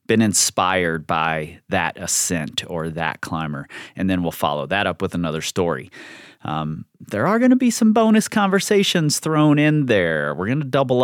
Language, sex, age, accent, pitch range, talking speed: English, male, 30-49, American, 90-130 Hz, 180 wpm